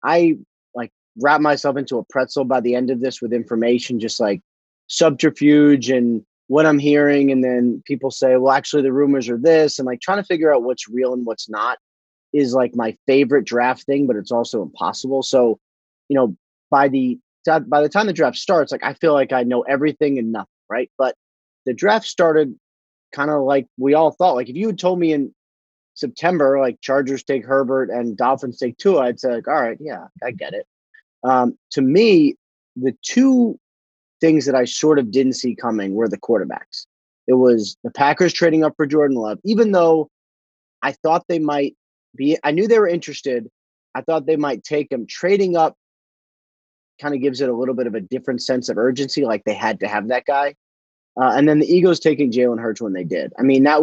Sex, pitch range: male, 120-155 Hz